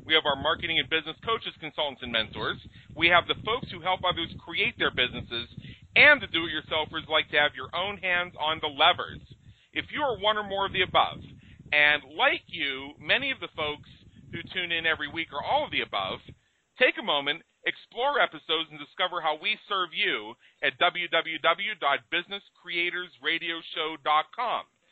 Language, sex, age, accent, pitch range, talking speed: English, male, 40-59, American, 145-190 Hz, 170 wpm